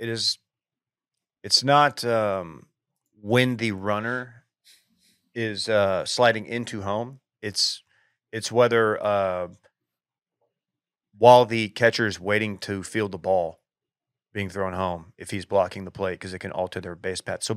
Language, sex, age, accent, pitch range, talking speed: English, male, 30-49, American, 100-125 Hz, 140 wpm